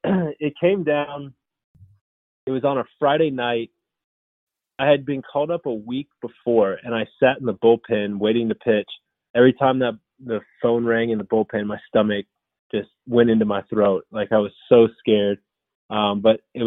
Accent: American